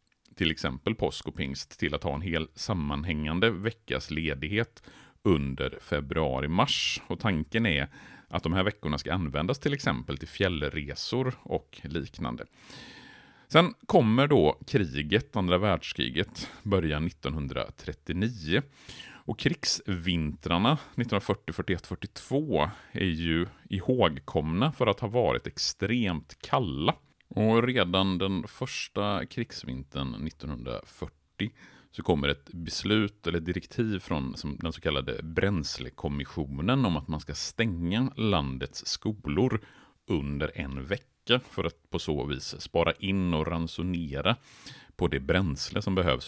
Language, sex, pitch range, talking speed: Swedish, male, 75-105 Hz, 120 wpm